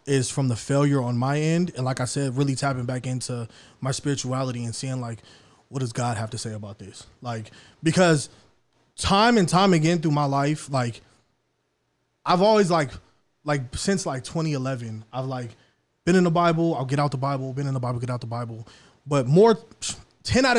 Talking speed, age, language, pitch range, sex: 200 wpm, 20-39, English, 130-175 Hz, male